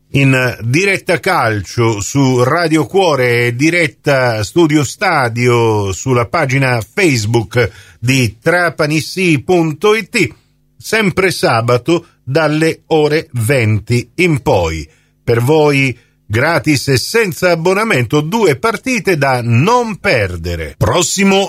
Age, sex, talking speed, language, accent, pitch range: 50-69, male, 95 wpm, Italian, native, 115-175 Hz